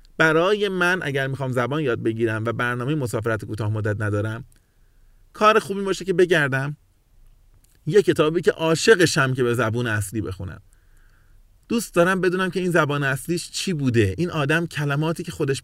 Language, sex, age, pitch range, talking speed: Persian, male, 30-49, 110-180 Hz, 155 wpm